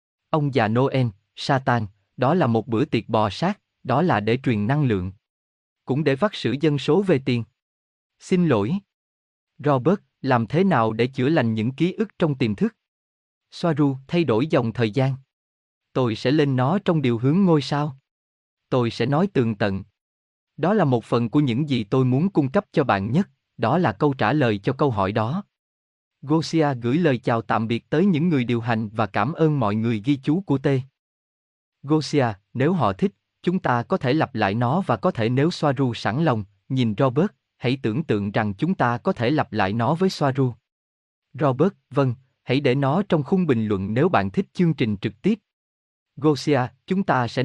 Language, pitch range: Vietnamese, 115-155 Hz